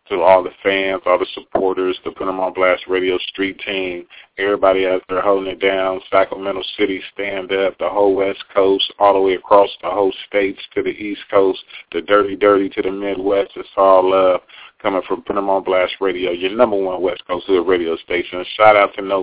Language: English